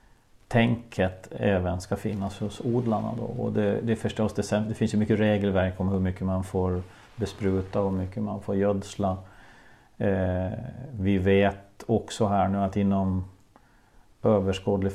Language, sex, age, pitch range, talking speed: Swedish, male, 40-59, 95-110 Hz, 135 wpm